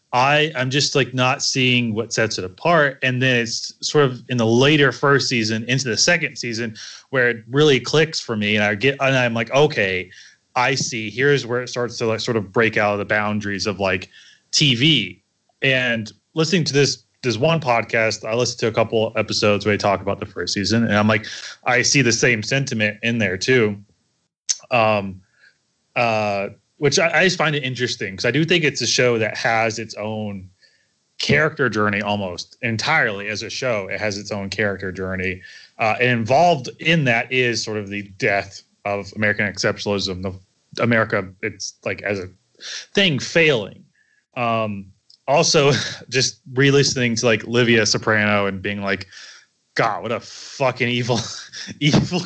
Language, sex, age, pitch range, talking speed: English, male, 20-39, 105-125 Hz, 180 wpm